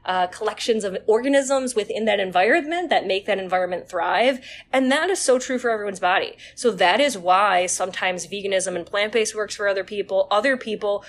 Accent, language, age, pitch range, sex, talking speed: American, English, 20-39, 195-275 Hz, female, 185 wpm